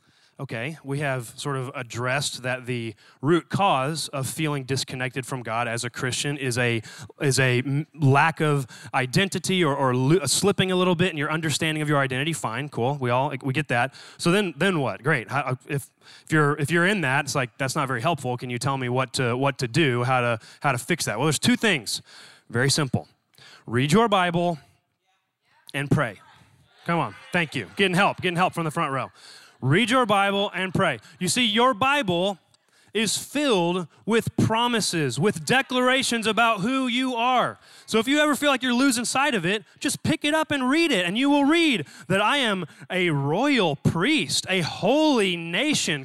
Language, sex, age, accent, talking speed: English, male, 20-39, American, 200 wpm